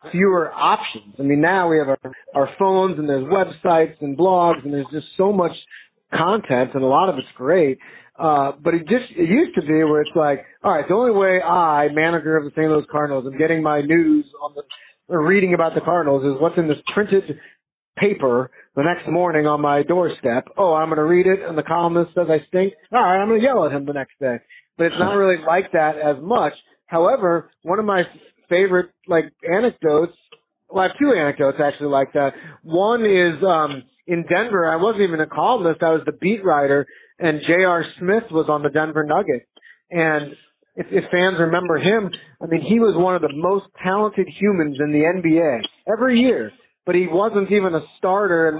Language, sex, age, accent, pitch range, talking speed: English, male, 30-49, American, 150-185 Hz, 210 wpm